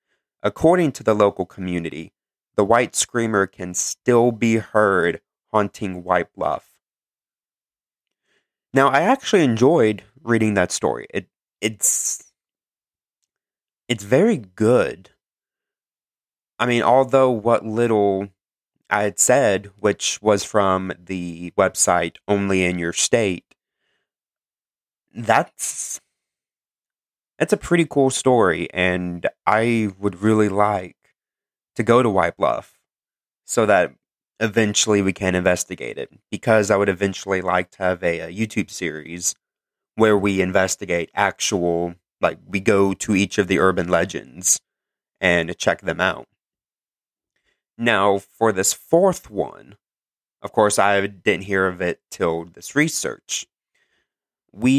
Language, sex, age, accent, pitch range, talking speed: English, male, 30-49, American, 90-115 Hz, 120 wpm